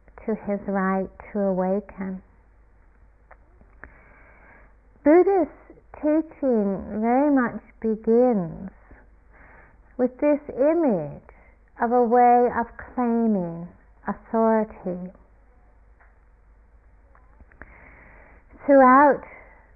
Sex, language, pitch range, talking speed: female, English, 195-250 Hz, 60 wpm